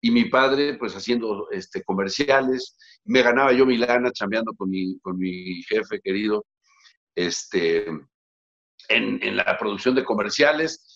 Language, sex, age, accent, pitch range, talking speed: Spanish, male, 50-69, Mexican, 120-170 Hz, 140 wpm